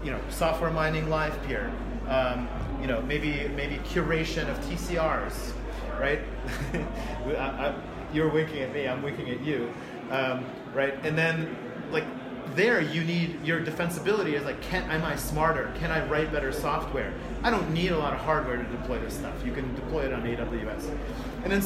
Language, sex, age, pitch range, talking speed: English, male, 30-49, 155-195 Hz, 180 wpm